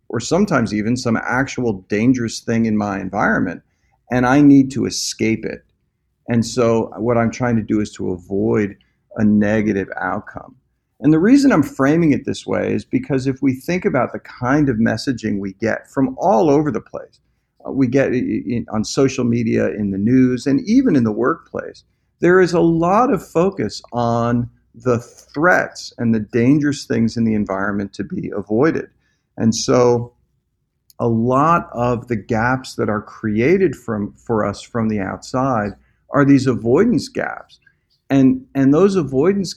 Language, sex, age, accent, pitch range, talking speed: English, male, 50-69, American, 110-135 Hz, 165 wpm